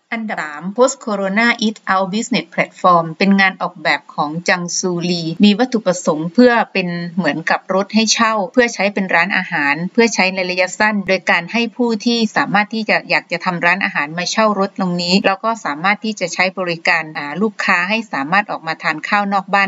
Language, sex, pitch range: Thai, female, 175-215 Hz